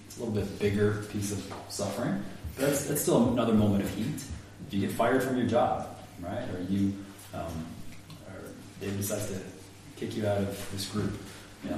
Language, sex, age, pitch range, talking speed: English, male, 30-49, 100-125 Hz, 185 wpm